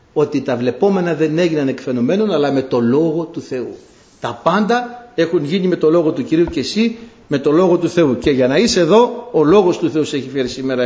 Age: 60-79